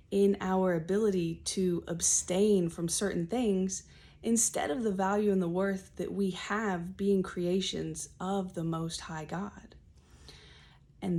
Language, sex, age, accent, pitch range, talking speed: English, female, 30-49, American, 165-195 Hz, 140 wpm